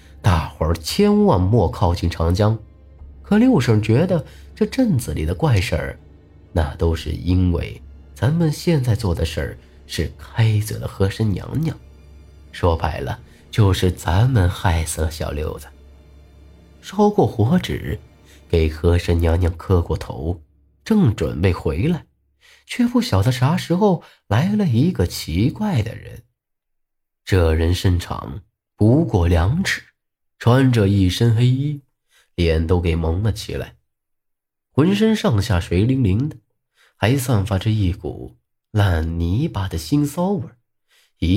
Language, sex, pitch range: Chinese, male, 85-125 Hz